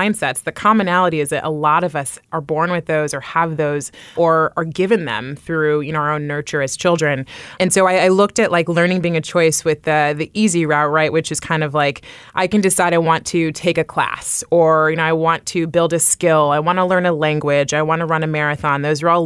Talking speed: 255 wpm